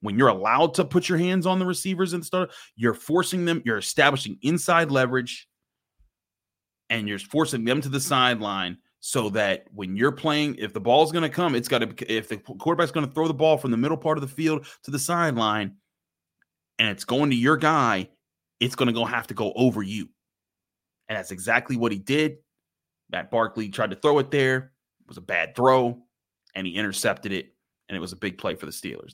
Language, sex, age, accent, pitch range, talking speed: English, male, 30-49, American, 95-135 Hz, 215 wpm